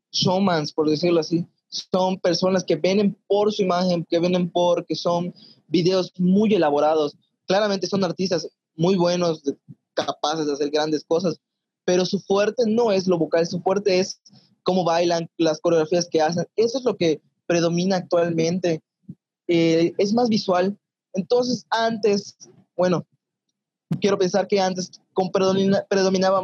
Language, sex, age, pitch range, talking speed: Spanish, male, 20-39, 155-190 Hz, 140 wpm